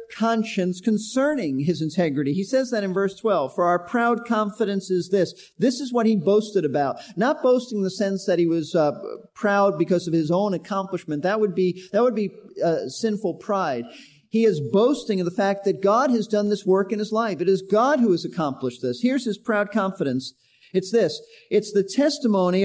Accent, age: American, 50-69